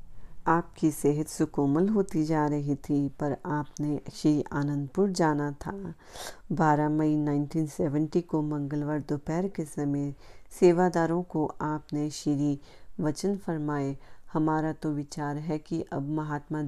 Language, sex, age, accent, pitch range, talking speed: Hindi, female, 40-59, native, 145-165 Hz, 120 wpm